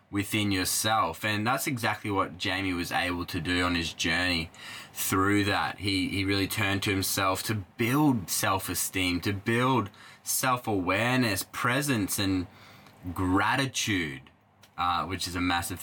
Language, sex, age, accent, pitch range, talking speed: English, male, 20-39, Australian, 95-120 Hz, 135 wpm